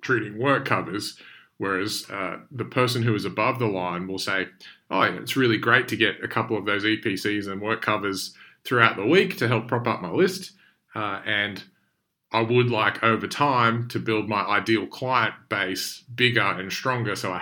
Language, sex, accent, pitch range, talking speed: English, male, Australian, 105-120 Hz, 195 wpm